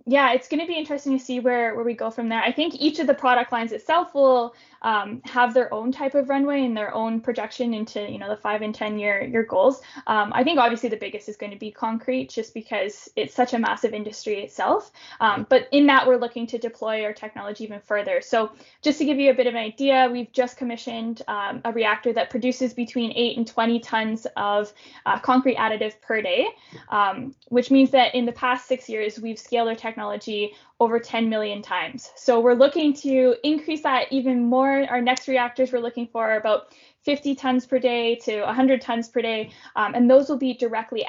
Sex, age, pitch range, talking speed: female, 10-29, 225-265 Hz, 225 wpm